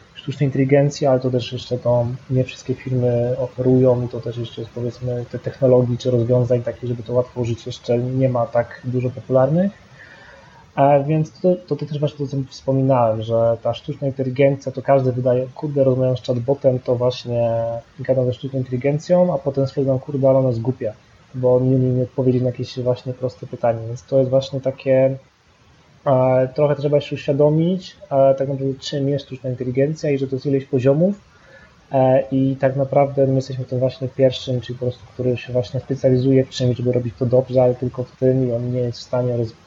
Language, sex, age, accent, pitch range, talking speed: Polish, male, 20-39, native, 120-135 Hz, 195 wpm